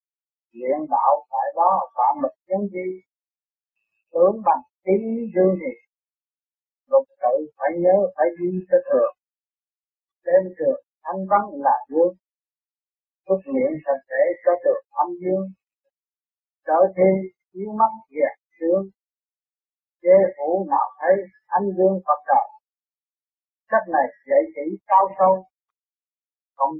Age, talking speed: 50-69, 125 wpm